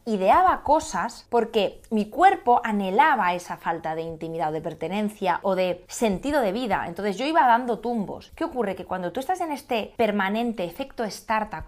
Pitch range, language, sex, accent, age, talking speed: 190-260 Hz, Spanish, female, Spanish, 20-39, 175 wpm